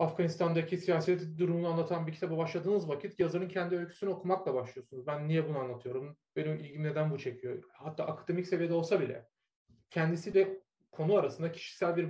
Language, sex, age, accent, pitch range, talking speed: Turkish, male, 30-49, native, 150-180 Hz, 165 wpm